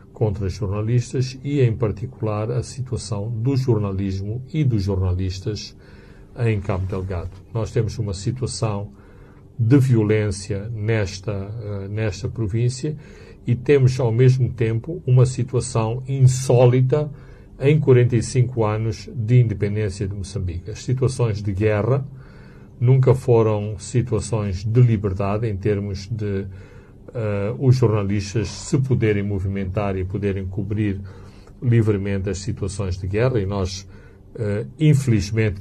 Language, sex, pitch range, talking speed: Portuguese, male, 100-125 Hz, 115 wpm